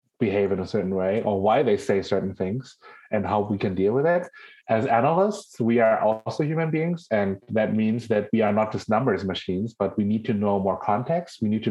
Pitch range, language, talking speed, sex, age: 100-140 Hz, English, 230 wpm, male, 30-49